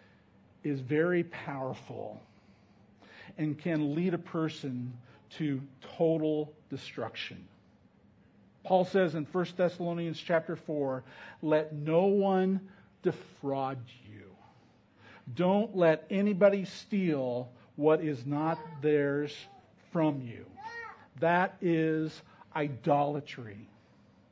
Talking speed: 90 wpm